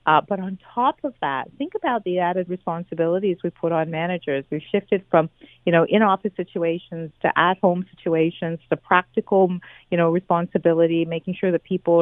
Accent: American